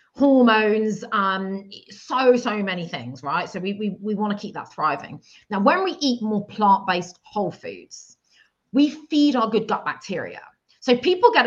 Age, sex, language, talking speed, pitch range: 30-49, female, English, 165 wpm, 185-245 Hz